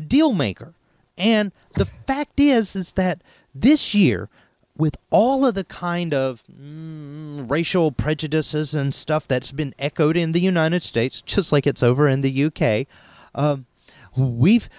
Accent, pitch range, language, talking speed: American, 135-220 Hz, English, 145 wpm